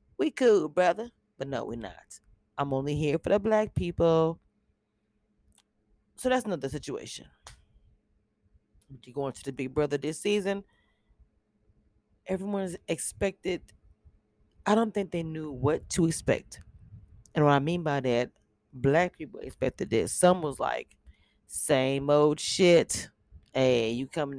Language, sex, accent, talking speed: English, female, American, 140 wpm